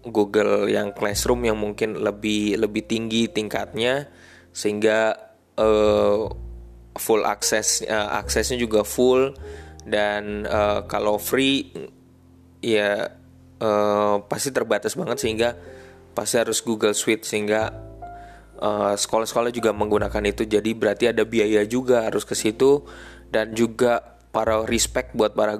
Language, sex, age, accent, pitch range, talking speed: Indonesian, male, 20-39, native, 105-115 Hz, 120 wpm